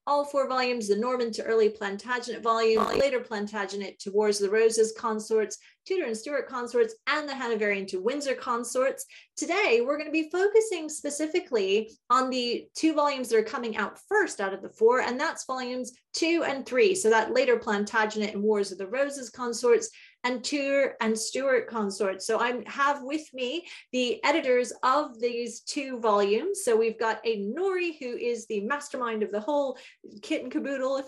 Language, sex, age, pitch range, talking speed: English, female, 30-49, 215-275 Hz, 185 wpm